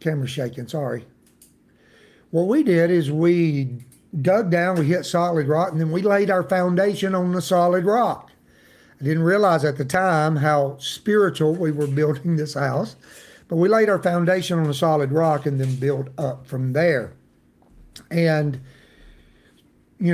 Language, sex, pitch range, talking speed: English, male, 145-185 Hz, 160 wpm